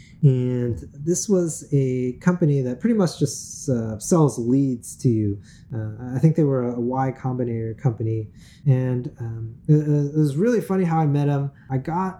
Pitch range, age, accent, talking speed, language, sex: 120-150 Hz, 20-39, American, 180 wpm, English, male